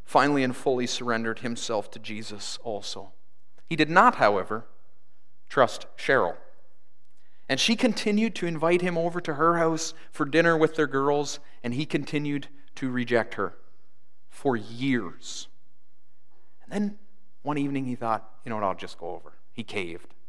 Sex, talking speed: male, 155 wpm